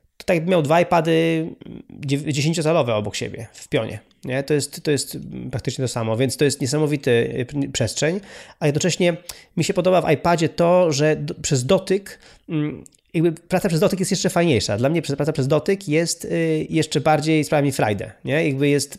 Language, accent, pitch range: Polish, native, 130-170 Hz